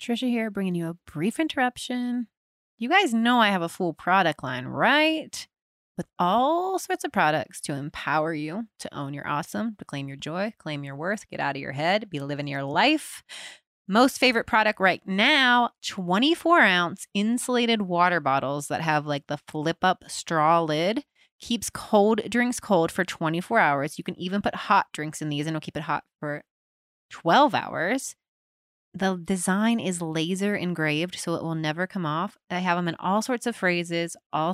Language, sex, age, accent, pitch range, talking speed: English, female, 20-39, American, 160-220 Hz, 185 wpm